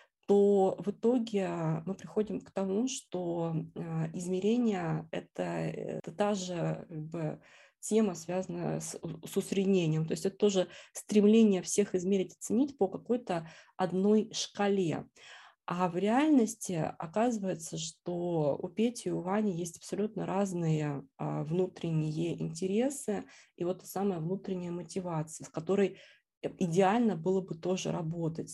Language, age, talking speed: Russian, 20-39, 130 wpm